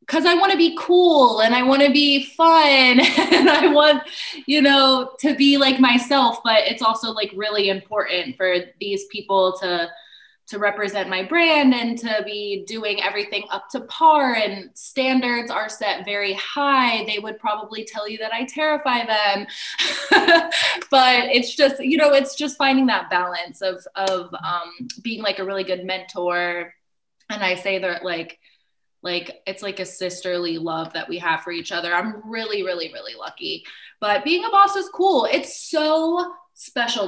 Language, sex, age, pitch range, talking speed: English, female, 20-39, 200-285 Hz, 175 wpm